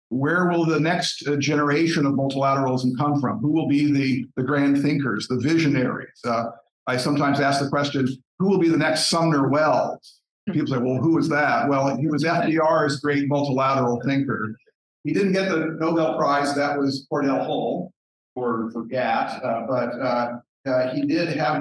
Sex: male